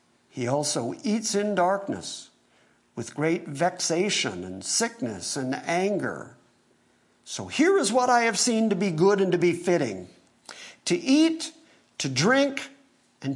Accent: American